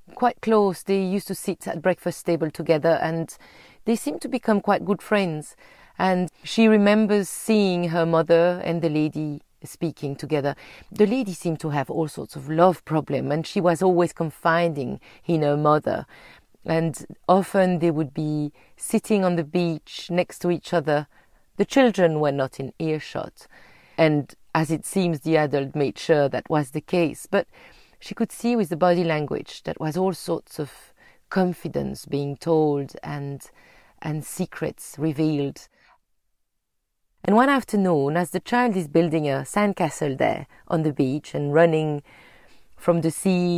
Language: English